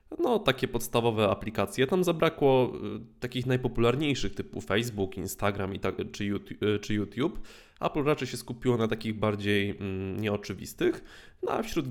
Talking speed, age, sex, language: 150 wpm, 20-39, male, Polish